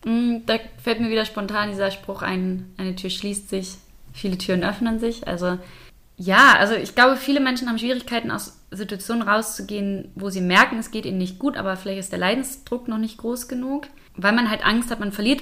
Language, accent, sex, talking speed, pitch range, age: German, German, female, 200 wpm, 180-225 Hz, 20-39